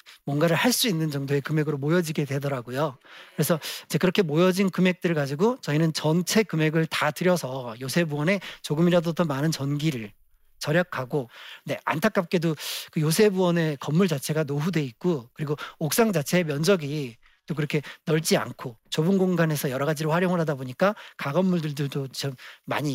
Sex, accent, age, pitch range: male, native, 40-59, 145-185 Hz